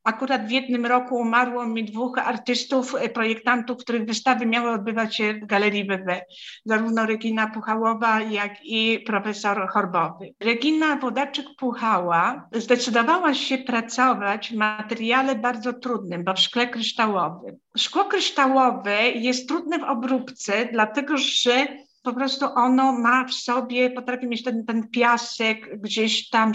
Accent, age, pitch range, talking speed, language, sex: native, 50-69, 220-255 Hz, 130 wpm, Polish, female